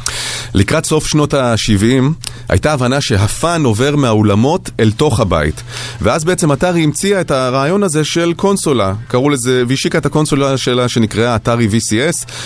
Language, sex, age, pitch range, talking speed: Hebrew, male, 30-49, 115-150 Hz, 145 wpm